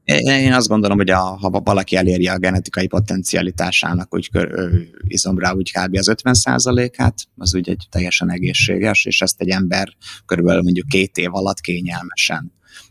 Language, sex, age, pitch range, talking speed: Hungarian, male, 30-49, 90-105 Hz, 145 wpm